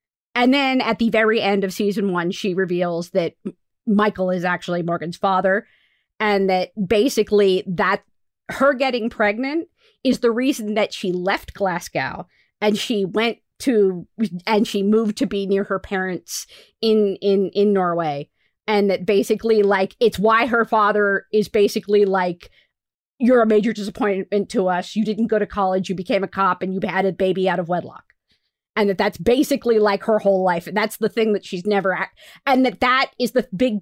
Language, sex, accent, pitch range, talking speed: English, female, American, 195-235 Hz, 185 wpm